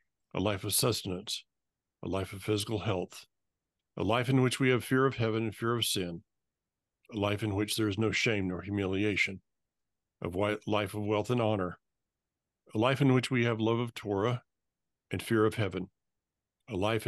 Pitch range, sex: 100-115 Hz, male